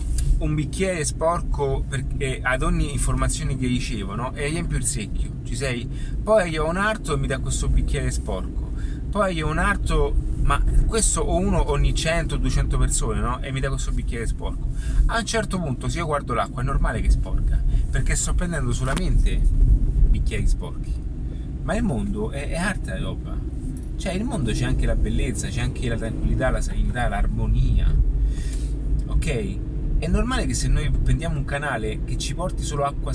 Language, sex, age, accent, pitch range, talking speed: Italian, male, 30-49, native, 120-140 Hz, 185 wpm